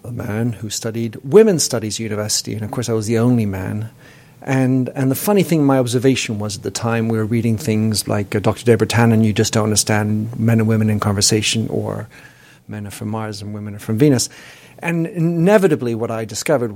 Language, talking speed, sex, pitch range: English, 215 wpm, male, 110-140 Hz